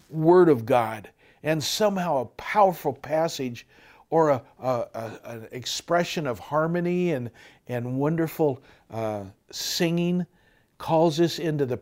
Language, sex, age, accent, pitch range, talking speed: English, male, 60-79, American, 130-180 Hz, 120 wpm